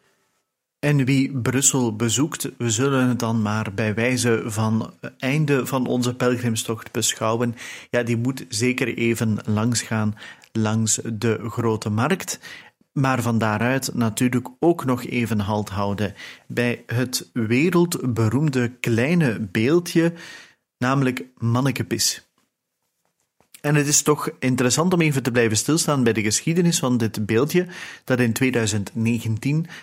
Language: Dutch